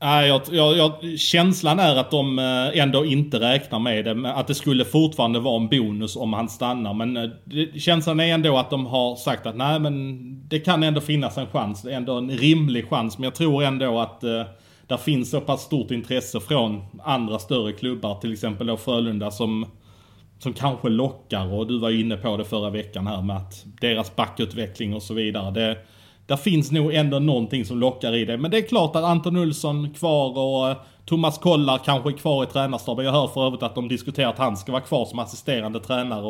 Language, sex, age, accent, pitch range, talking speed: Swedish, male, 30-49, Norwegian, 115-145 Hz, 205 wpm